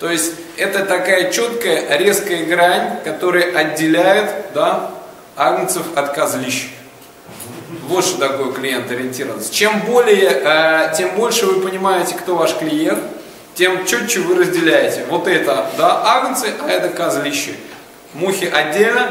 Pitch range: 165-235 Hz